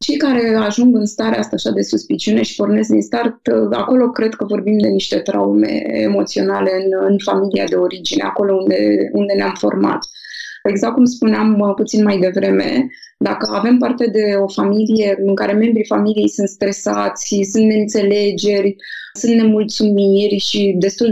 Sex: female